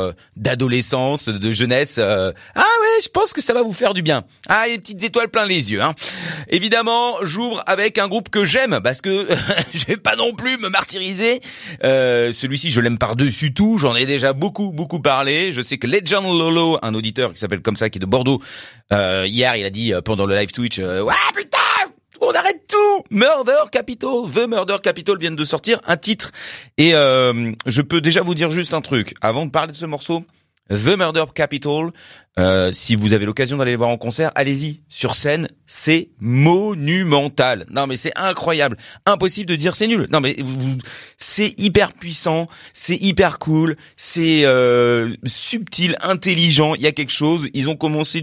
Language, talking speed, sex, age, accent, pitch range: French, 190 wpm, male, 30-49, French, 130-195 Hz